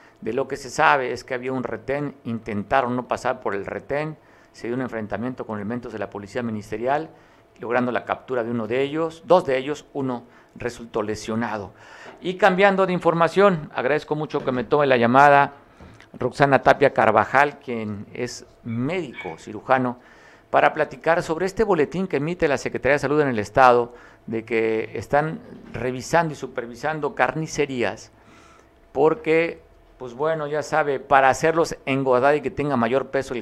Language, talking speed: Spanish, 165 wpm